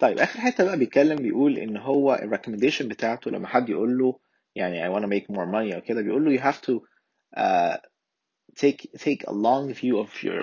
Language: Arabic